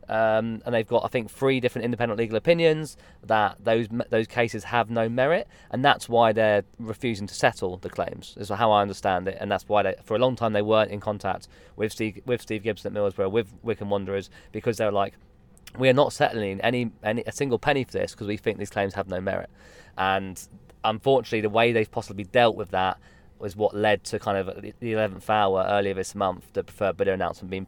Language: English